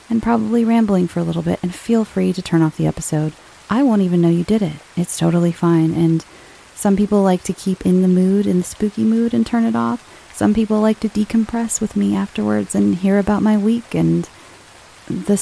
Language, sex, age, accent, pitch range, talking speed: English, female, 30-49, American, 165-205 Hz, 220 wpm